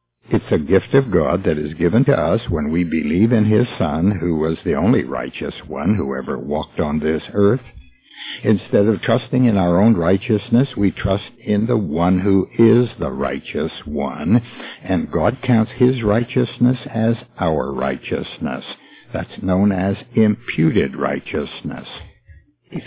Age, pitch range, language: 60-79, 90-120 Hz, English